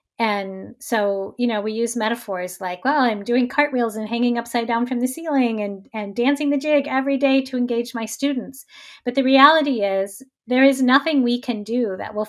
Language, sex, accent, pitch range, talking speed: English, female, American, 195-245 Hz, 205 wpm